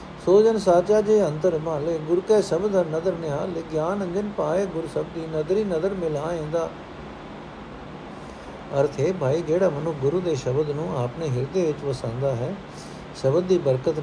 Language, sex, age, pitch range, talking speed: Punjabi, male, 60-79, 140-175 Hz, 175 wpm